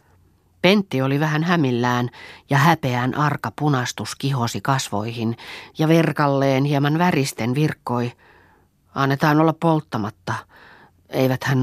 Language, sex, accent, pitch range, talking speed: Finnish, female, native, 115-155 Hz, 100 wpm